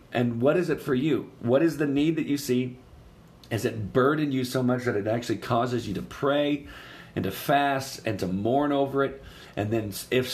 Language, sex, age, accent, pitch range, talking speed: English, male, 40-59, American, 105-130 Hz, 215 wpm